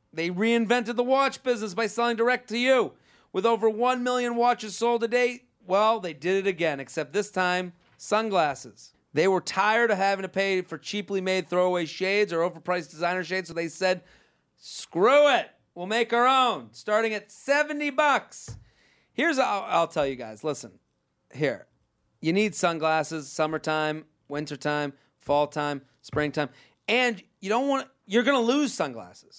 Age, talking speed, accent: 40-59, 160 wpm, American